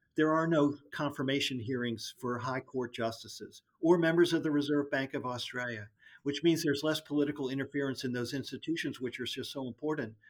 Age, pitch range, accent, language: 50-69, 130-170 Hz, American, English